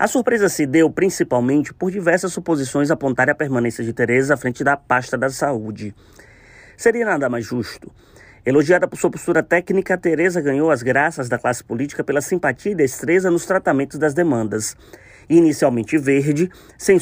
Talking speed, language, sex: 160 wpm, Portuguese, male